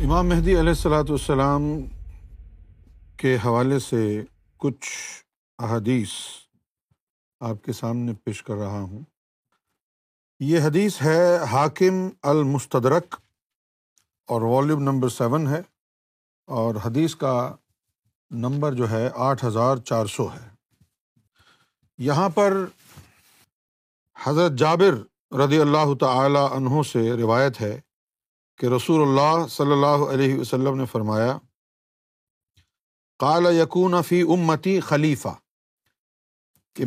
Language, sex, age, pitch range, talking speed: Urdu, male, 50-69, 115-160 Hz, 105 wpm